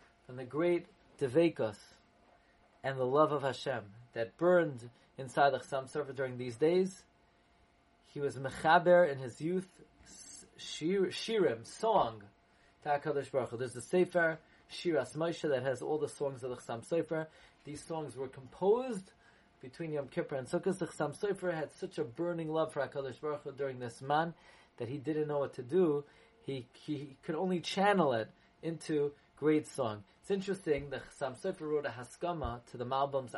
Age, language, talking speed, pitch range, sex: 30-49, English, 165 wpm, 120-155 Hz, male